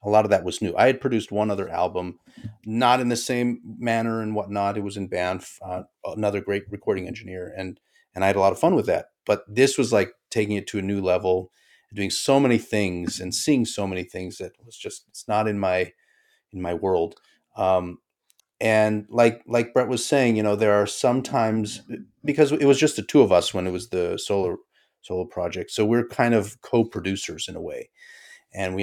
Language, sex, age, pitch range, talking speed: English, male, 30-49, 100-125 Hz, 220 wpm